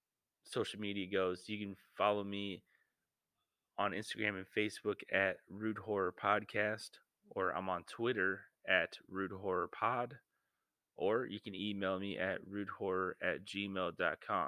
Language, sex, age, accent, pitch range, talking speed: English, male, 20-39, American, 95-105 Hz, 135 wpm